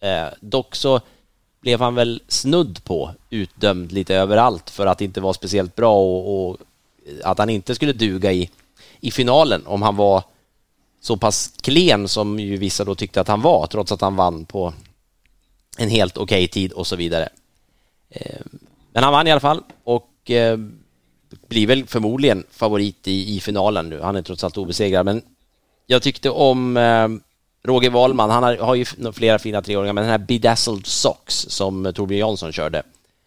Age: 30-49